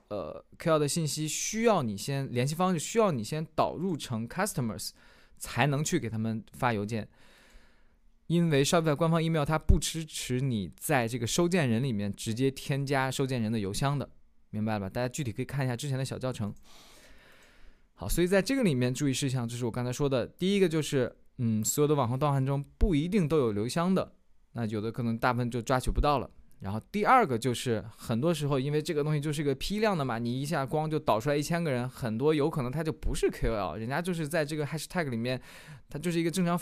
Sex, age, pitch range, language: male, 20-39, 120-160 Hz, Chinese